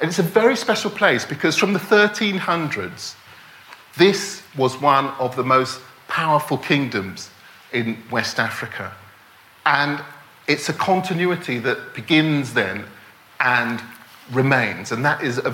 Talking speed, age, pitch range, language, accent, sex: 130 wpm, 40-59, 130-175 Hz, English, British, male